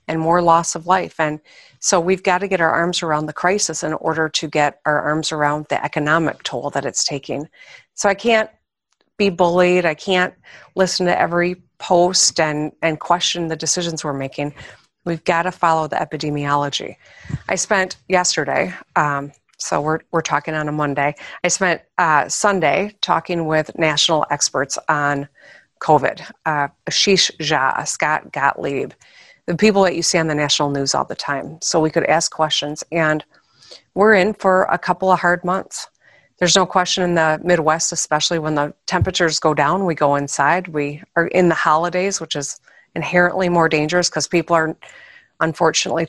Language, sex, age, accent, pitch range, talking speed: English, female, 40-59, American, 150-180 Hz, 175 wpm